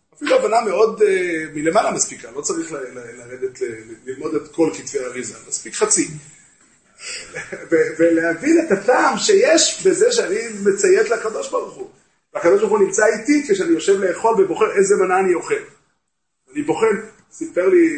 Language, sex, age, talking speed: Hebrew, male, 30-49, 155 wpm